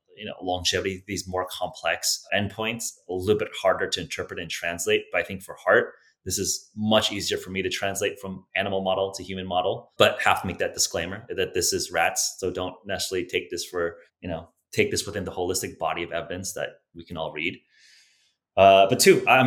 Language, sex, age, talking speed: English, male, 20-39, 215 wpm